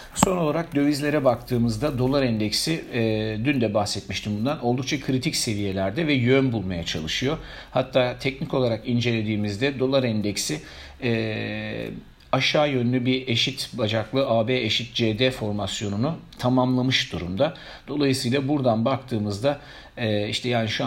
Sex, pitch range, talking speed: male, 105-130 Hz, 125 wpm